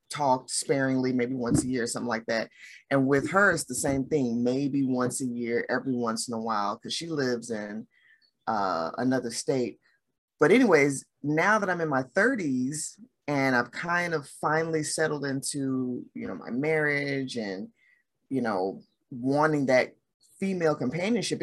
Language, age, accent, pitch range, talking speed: English, 20-39, American, 125-165 Hz, 160 wpm